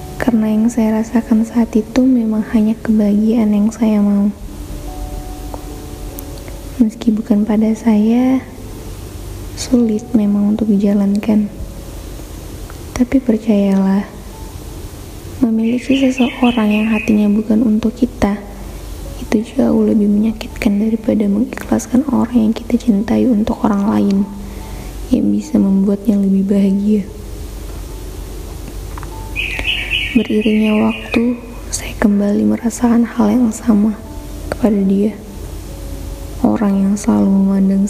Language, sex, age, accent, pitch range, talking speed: Indonesian, female, 20-39, native, 190-225 Hz, 95 wpm